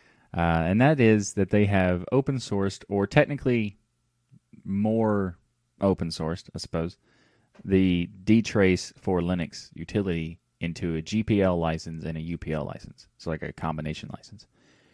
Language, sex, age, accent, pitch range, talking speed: English, male, 30-49, American, 80-110 Hz, 130 wpm